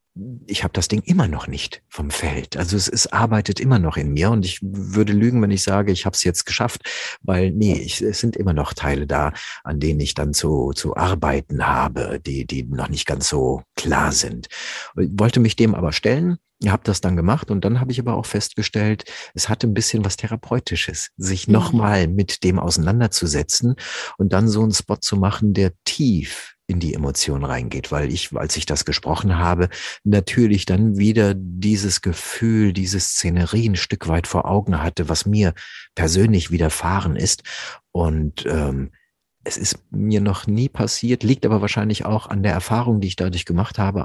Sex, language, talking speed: male, German, 190 wpm